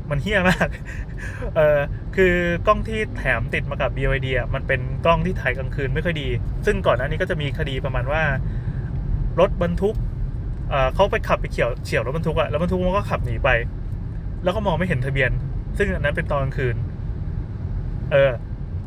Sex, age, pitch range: male, 20-39, 110-140 Hz